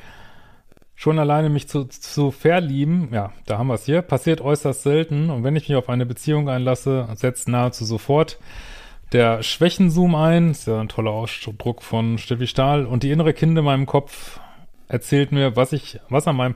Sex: male